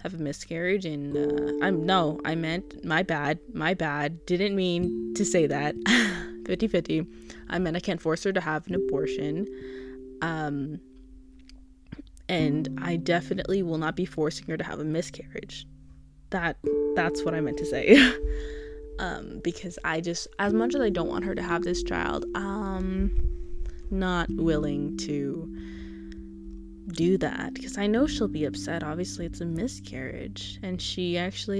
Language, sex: English, female